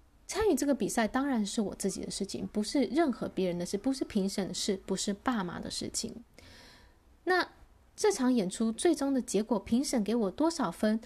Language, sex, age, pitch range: Chinese, female, 20-39, 200-260 Hz